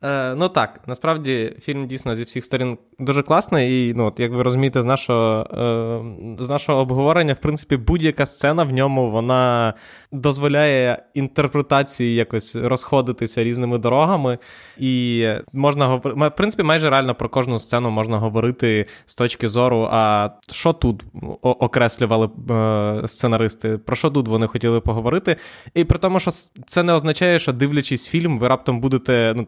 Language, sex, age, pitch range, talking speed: Ukrainian, male, 20-39, 115-135 Hz, 145 wpm